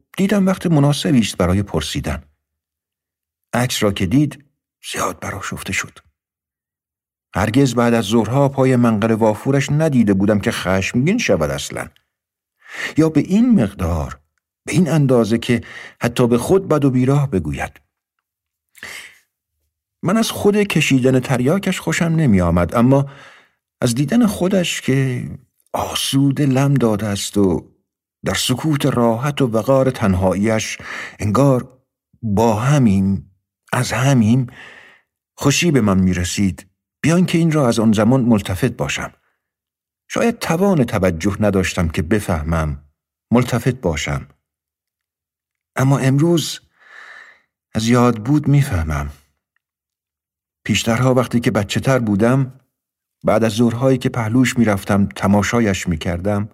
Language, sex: Persian, male